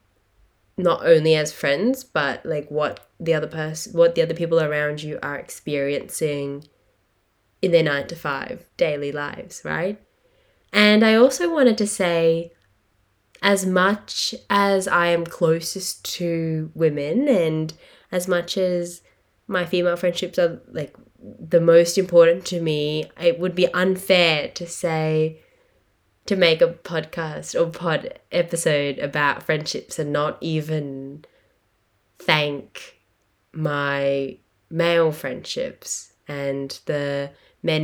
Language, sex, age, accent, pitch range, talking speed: English, female, 10-29, Australian, 140-180 Hz, 125 wpm